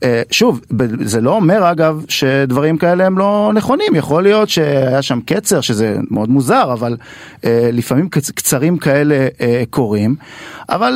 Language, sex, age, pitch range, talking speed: Hebrew, male, 40-59, 130-190 Hz, 155 wpm